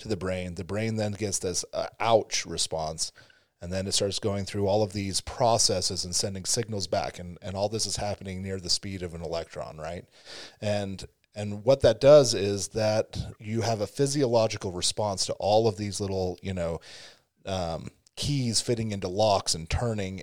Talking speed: 190 wpm